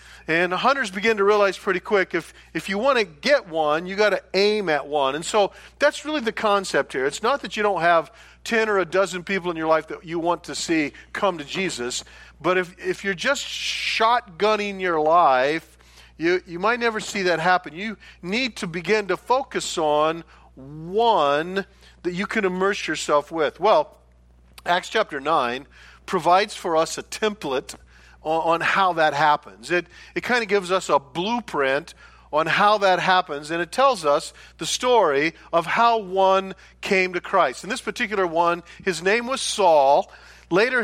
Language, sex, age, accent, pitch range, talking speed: English, male, 50-69, American, 165-215 Hz, 180 wpm